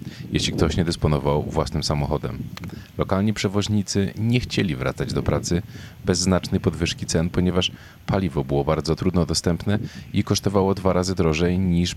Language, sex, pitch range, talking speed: Polish, male, 80-100 Hz, 145 wpm